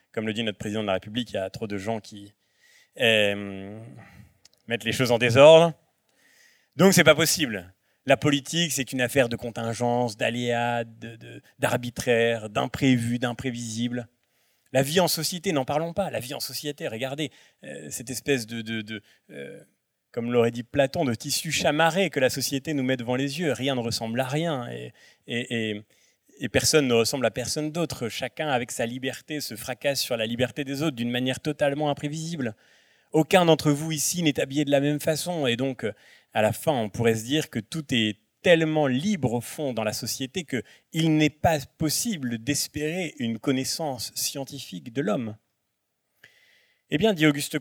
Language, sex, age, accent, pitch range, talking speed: French, male, 30-49, French, 115-155 Hz, 185 wpm